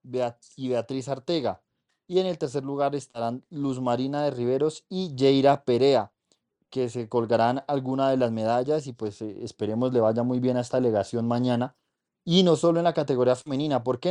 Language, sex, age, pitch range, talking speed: Spanish, male, 20-39, 125-145 Hz, 185 wpm